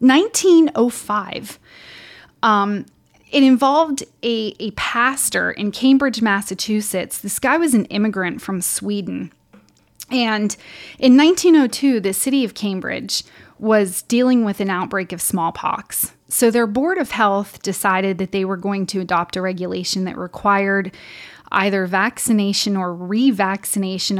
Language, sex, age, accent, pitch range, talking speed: English, female, 20-39, American, 190-225 Hz, 125 wpm